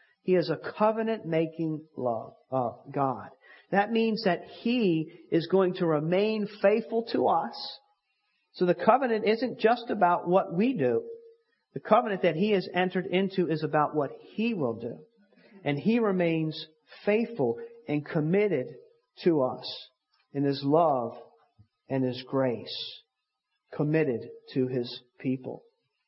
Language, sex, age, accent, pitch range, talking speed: English, male, 50-69, American, 145-200 Hz, 135 wpm